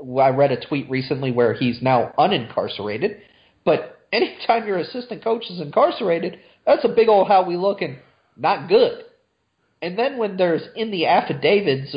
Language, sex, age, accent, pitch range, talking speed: English, male, 30-49, American, 130-190 Hz, 165 wpm